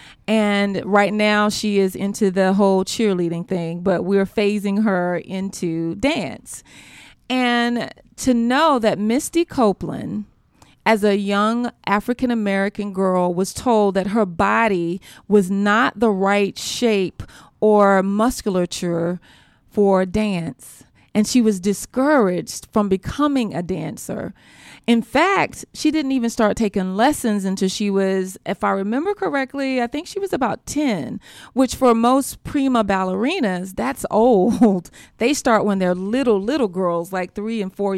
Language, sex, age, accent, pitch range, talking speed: English, female, 30-49, American, 190-230 Hz, 140 wpm